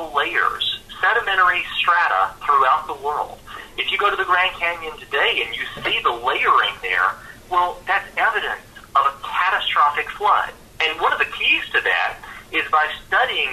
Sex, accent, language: male, American, English